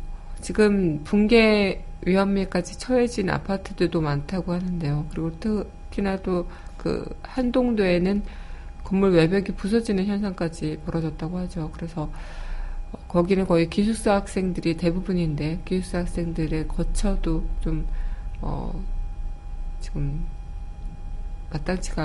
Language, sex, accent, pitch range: Korean, female, native, 155-195 Hz